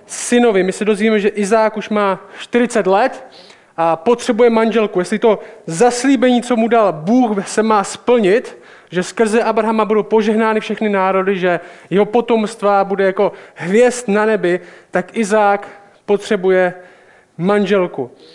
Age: 20-39